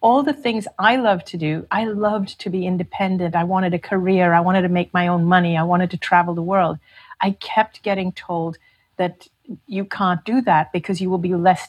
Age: 40-59